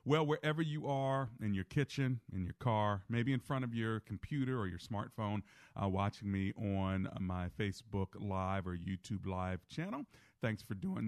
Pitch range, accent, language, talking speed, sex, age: 95-135 Hz, American, English, 180 wpm, male, 40-59